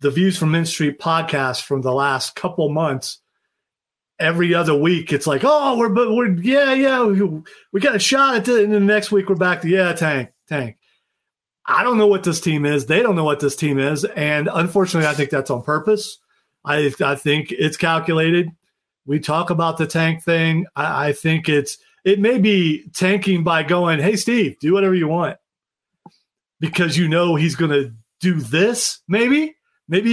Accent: American